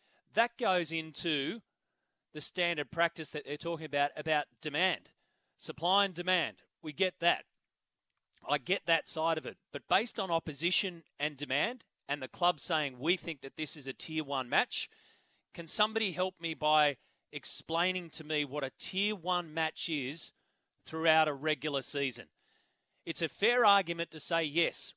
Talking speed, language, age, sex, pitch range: 165 wpm, English, 30-49, male, 150-180 Hz